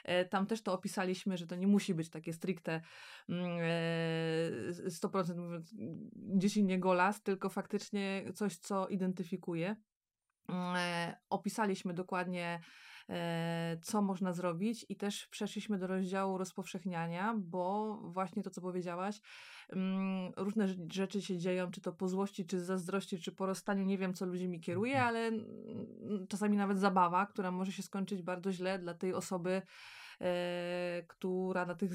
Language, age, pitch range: Polish, 20-39, 180-200 Hz